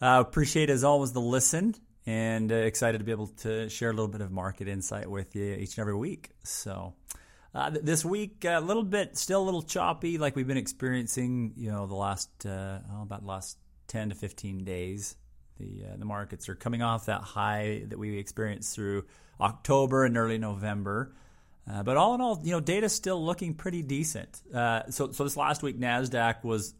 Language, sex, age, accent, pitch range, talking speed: English, male, 30-49, American, 100-125 Hz, 210 wpm